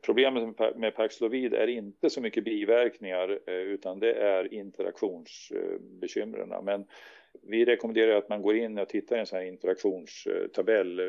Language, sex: Swedish, male